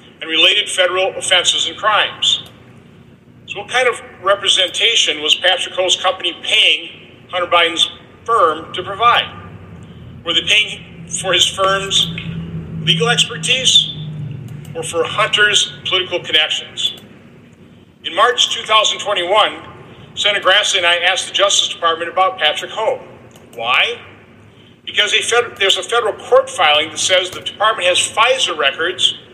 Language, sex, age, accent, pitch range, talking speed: English, male, 50-69, American, 135-195 Hz, 125 wpm